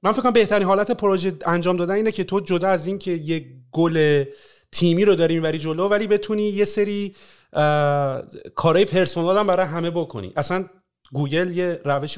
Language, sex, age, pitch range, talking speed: Persian, male, 40-59, 140-185 Hz, 175 wpm